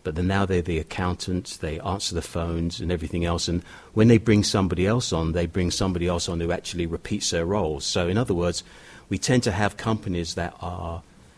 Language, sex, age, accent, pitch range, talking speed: English, male, 40-59, British, 85-105 Hz, 215 wpm